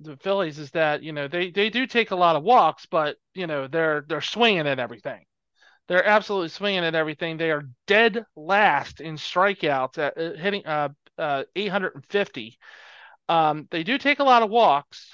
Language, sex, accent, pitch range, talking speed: English, male, American, 150-205 Hz, 185 wpm